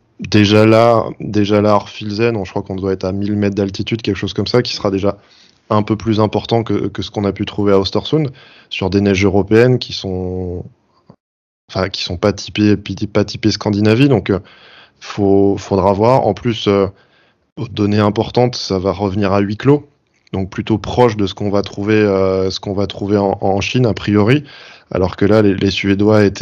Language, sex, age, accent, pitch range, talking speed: French, male, 20-39, French, 100-110 Hz, 200 wpm